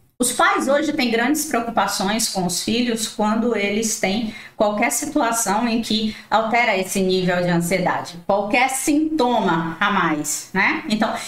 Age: 20-39